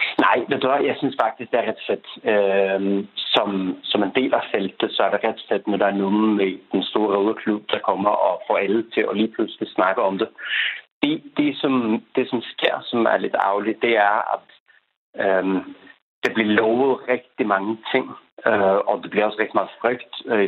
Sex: male